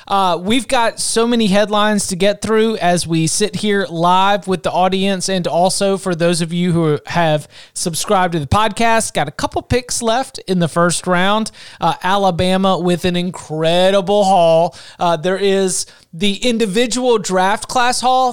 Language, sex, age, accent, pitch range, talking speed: English, male, 30-49, American, 175-210 Hz, 170 wpm